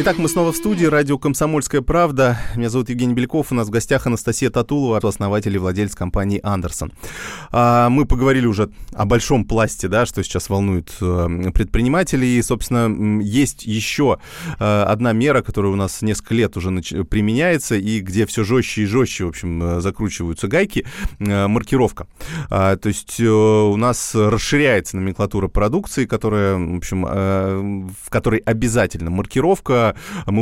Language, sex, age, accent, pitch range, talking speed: Russian, male, 20-39, native, 95-125 Hz, 140 wpm